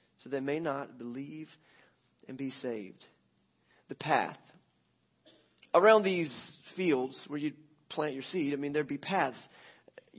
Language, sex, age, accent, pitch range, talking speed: English, male, 30-49, American, 145-200 Hz, 140 wpm